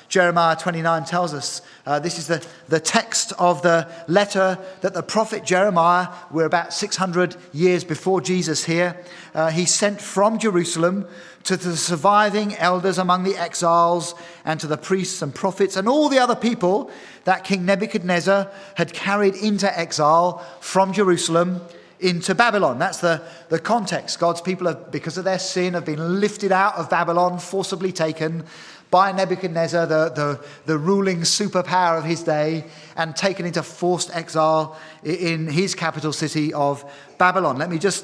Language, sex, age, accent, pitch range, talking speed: English, male, 40-59, British, 165-195 Hz, 160 wpm